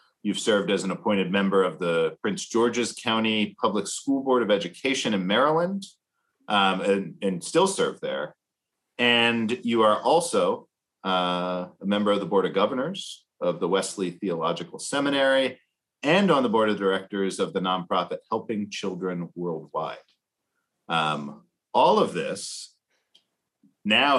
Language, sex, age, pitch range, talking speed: English, male, 40-59, 95-135 Hz, 145 wpm